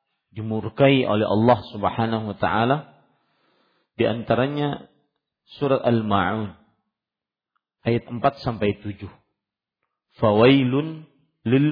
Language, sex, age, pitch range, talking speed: Malay, male, 50-69, 110-135 Hz, 80 wpm